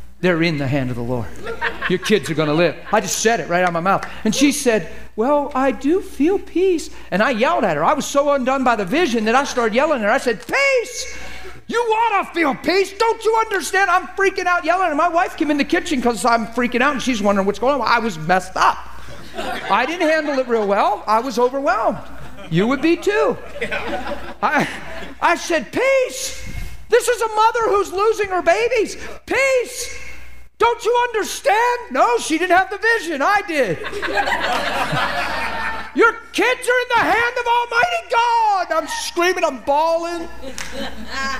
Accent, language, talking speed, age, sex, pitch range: American, English, 190 wpm, 50-69, male, 230-375 Hz